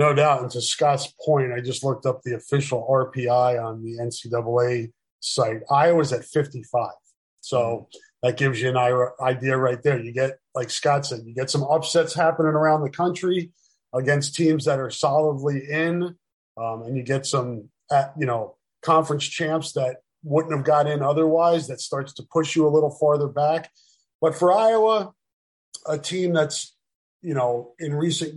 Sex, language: male, English